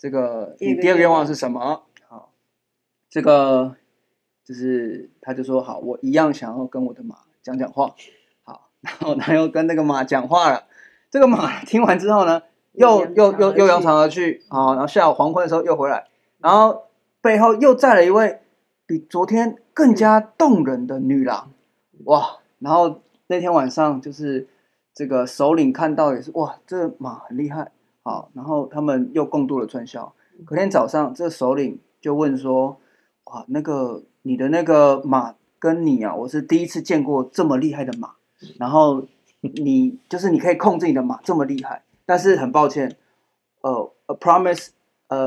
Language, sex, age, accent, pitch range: Chinese, male, 20-39, native, 130-195 Hz